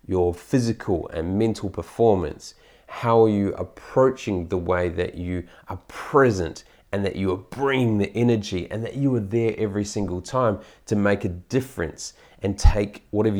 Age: 30-49